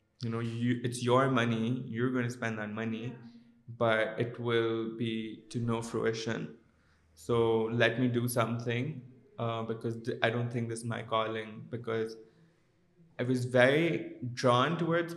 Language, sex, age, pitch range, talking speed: Urdu, male, 20-39, 115-130 Hz, 155 wpm